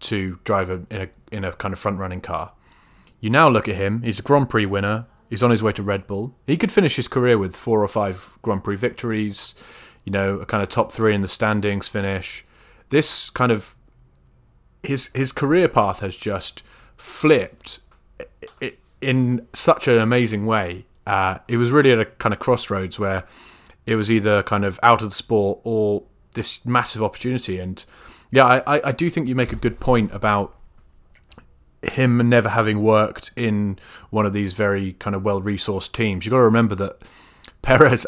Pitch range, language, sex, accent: 100-120 Hz, English, male, British